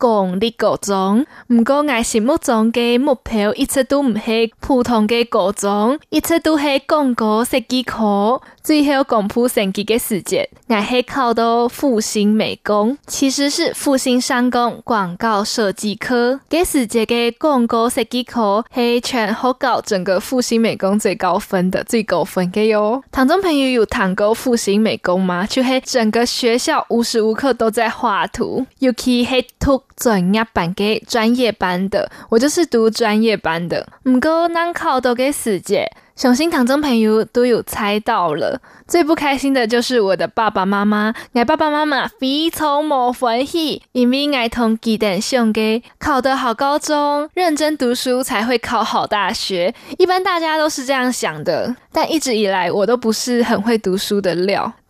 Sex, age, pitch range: female, 10-29, 220-270 Hz